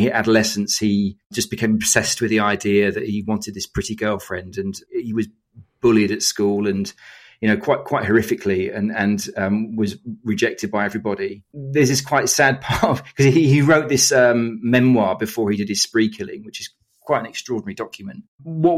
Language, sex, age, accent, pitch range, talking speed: English, male, 40-59, British, 105-135 Hz, 190 wpm